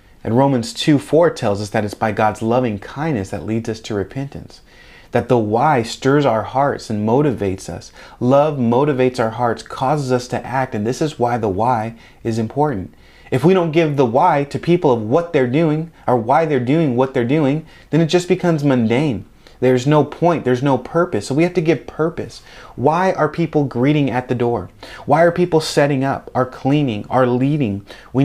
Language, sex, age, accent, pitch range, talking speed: English, male, 30-49, American, 115-145 Hz, 200 wpm